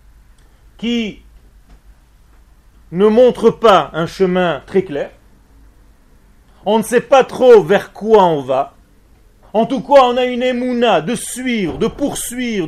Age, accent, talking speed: 40-59, French, 135 wpm